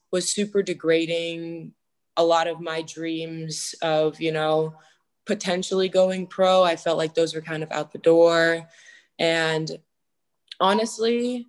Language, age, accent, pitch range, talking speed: English, 20-39, American, 160-190 Hz, 135 wpm